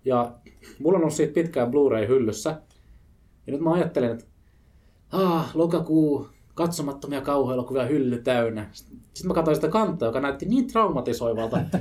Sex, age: male, 20-39